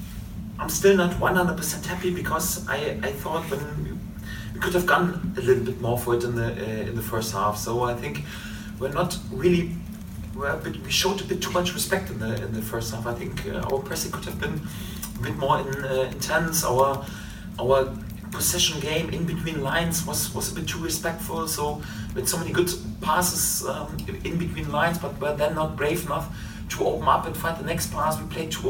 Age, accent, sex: 30-49, German, male